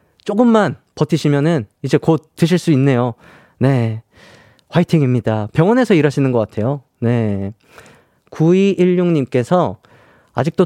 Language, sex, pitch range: Korean, male, 130-175 Hz